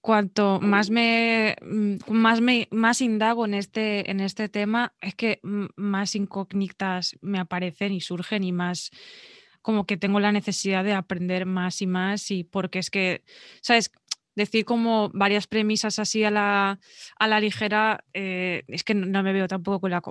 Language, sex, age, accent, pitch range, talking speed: Spanish, female, 20-39, Spanish, 180-210 Hz, 165 wpm